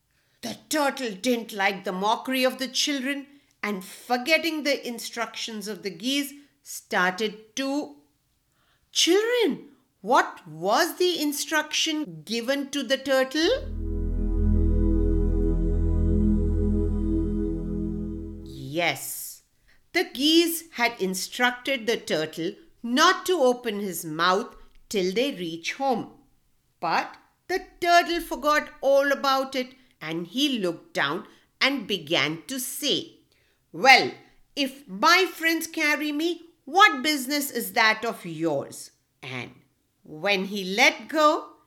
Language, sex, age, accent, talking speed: English, female, 50-69, Indian, 110 wpm